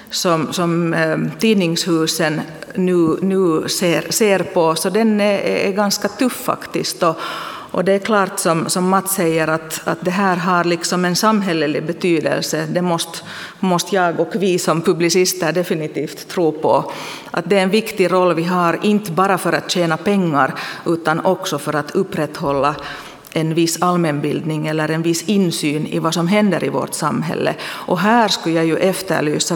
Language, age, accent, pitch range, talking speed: Swedish, 40-59, Finnish, 160-190 Hz, 170 wpm